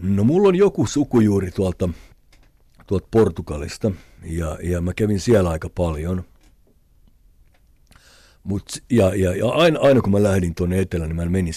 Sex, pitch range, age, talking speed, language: male, 80-95 Hz, 50-69, 150 wpm, Finnish